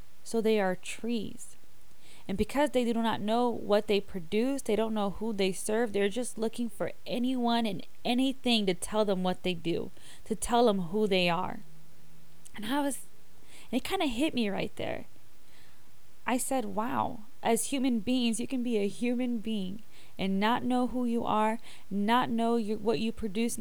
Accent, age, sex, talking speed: American, 20-39, female, 180 wpm